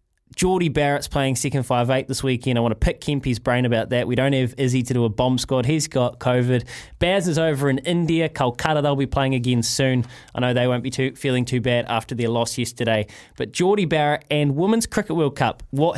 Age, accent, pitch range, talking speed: 20-39, Australian, 120-155 Hz, 225 wpm